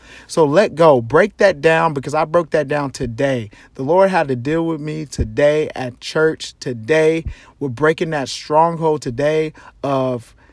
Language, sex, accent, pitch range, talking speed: English, male, American, 135-160 Hz, 165 wpm